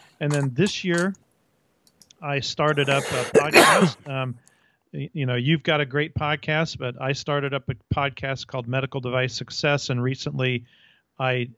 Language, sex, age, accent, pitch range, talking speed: English, male, 40-59, American, 125-145 Hz, 155 wpm